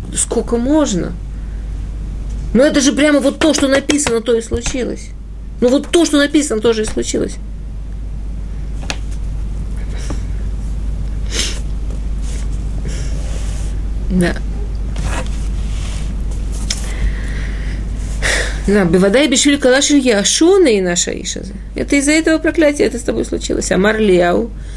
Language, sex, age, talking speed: Russian, female, 50-69, 105 wpm